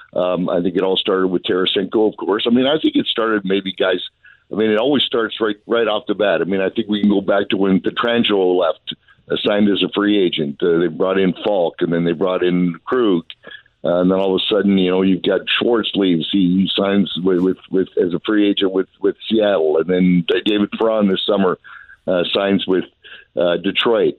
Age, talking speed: 60-79, 230 wpm